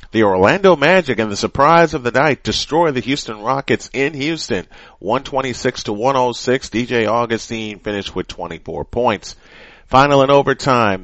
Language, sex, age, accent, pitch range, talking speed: English, male, 30-49, American, 105-135 Hz, 145 wpm